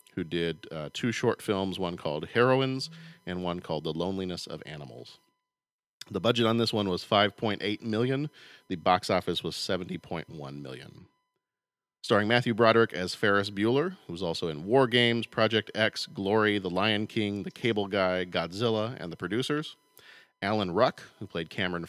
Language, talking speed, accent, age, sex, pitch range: English, 165 wpm, American, 40-59, male, 90-125 Hz